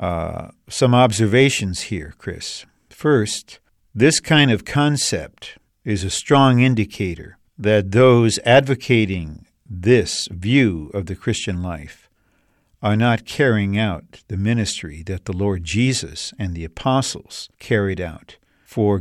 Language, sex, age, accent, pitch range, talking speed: English, male, 50-69, American, 100-130 Hz, 125 wpm